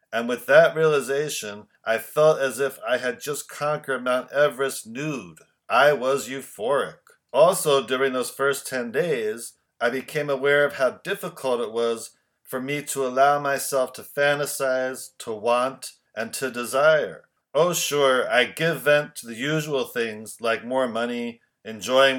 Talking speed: 155 wpm